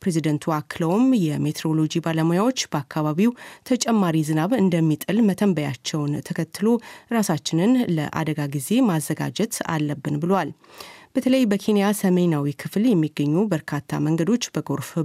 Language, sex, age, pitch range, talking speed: Amharic, female, 30-49, 150-190 Hz, 95 wpm